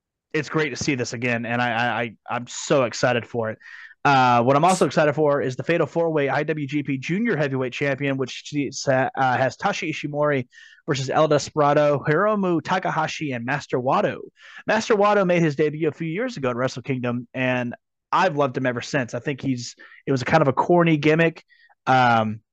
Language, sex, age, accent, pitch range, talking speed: English, male, 30-49, American, 125-155 Hz, 195 wpm